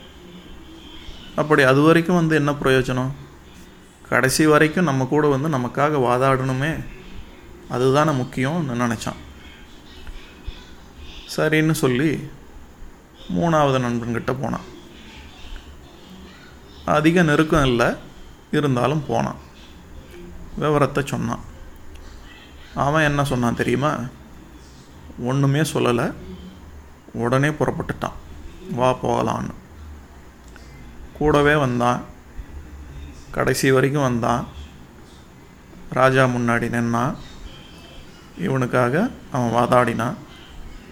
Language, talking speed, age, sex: Tamil, 70 wpm, 30-49, male